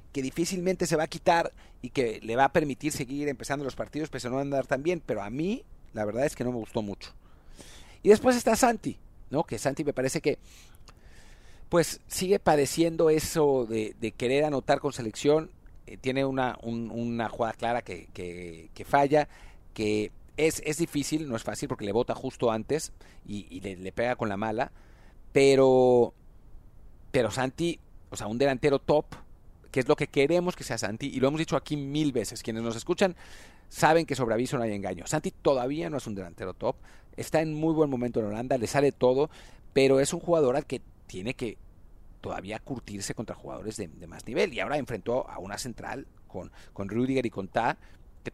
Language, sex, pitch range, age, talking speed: English, male, 105-150 Hz, 40-59, 200 wpm